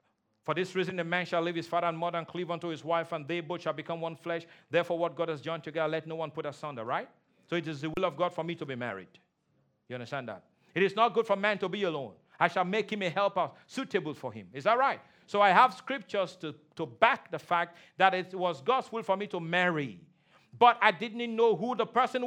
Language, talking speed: English, 260 wpm